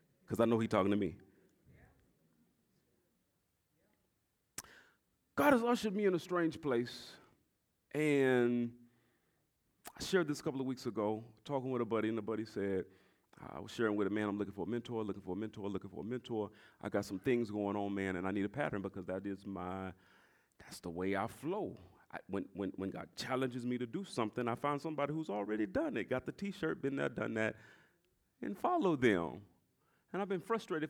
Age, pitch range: 30-49, 110-155 Hz